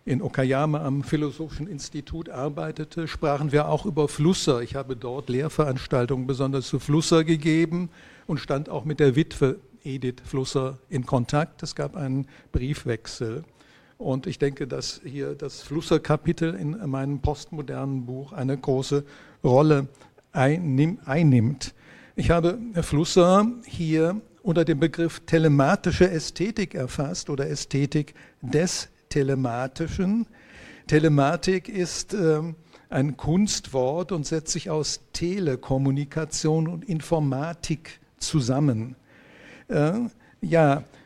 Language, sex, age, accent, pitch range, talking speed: German, male, 60-79, German, 140-170 Hz, 110 wpm